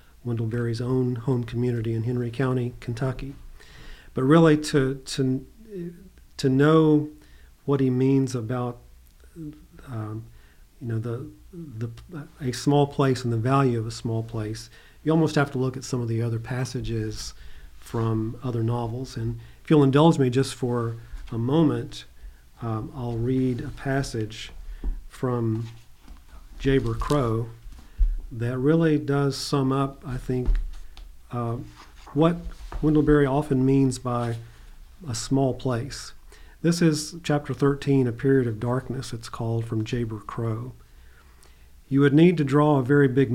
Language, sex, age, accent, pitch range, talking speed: English, male, 40-59, American, 115-140 Hz, 145 wpm